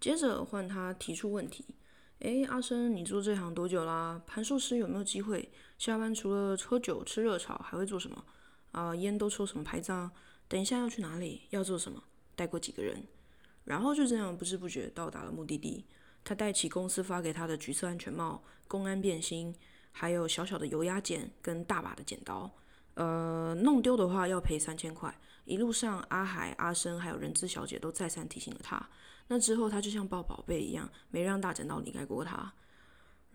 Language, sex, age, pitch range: Chinese, female, 20-39, 175-225 Hz